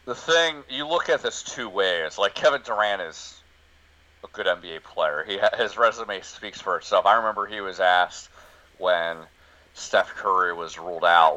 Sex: male